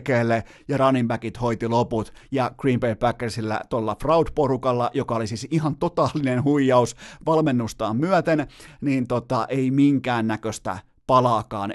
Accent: native